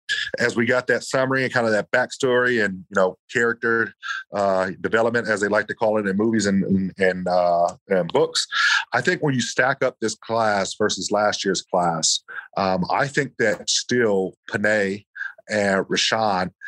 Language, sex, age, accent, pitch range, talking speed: English, male, 40-59, American, 95-115 Hz, 180 wpm